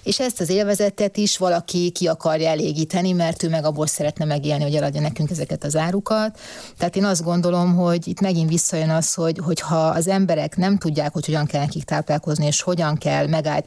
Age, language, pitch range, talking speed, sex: 30-49, Hungarian, 150-180 Hz, 200 wpm, female